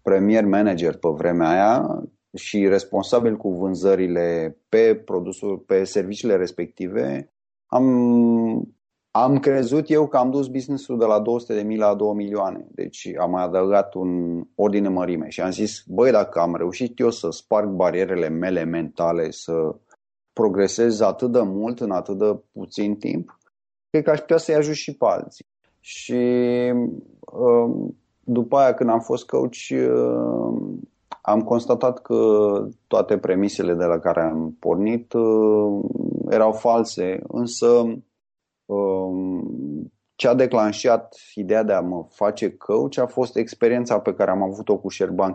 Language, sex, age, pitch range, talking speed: Romanian, male, 30-49, 95-115 Hz, 140 wpm